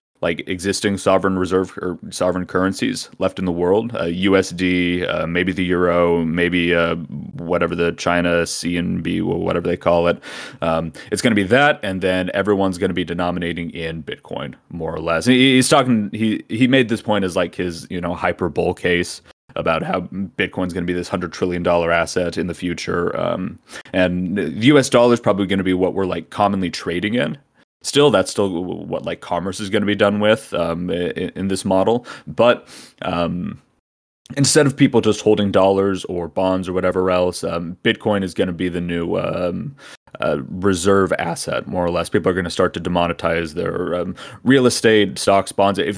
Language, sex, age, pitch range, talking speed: English, male, 30-49, 85-100 Hz, 200 wpm